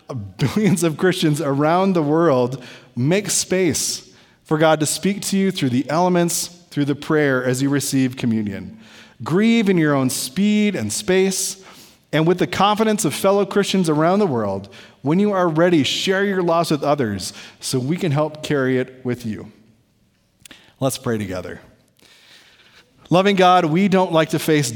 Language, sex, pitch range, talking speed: English, male, 130-180 Hz, 165 wpm